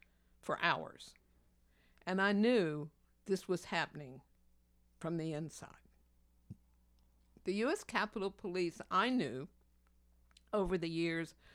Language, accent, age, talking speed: English, American, 60-79, 105 wpm